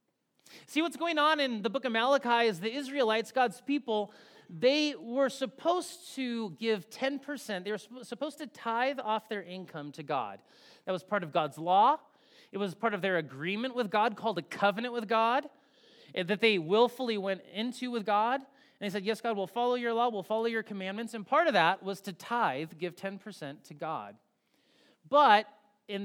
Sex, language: male, English